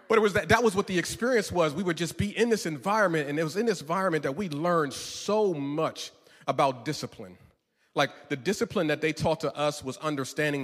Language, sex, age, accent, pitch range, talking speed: English, male, 40-59, American, 145-210 Hz, 225 wpm